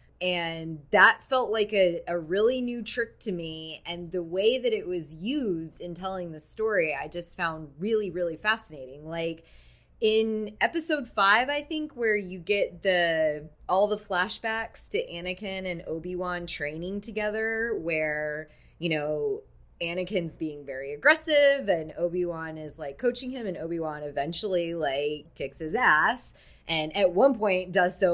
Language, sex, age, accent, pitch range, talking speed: English, female, 20-39, American, 165-225 Hz, 155 wpm